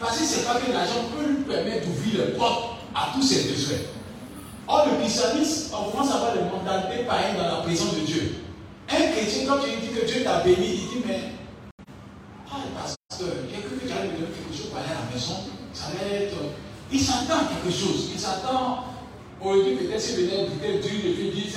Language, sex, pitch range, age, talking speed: French, male, 150-230 Hz, 40-59, 230 wpm